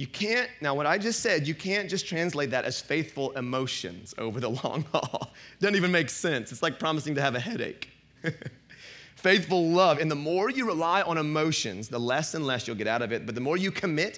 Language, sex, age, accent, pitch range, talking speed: English, male, 30-49, American, 135-195 Hz, 225 wpm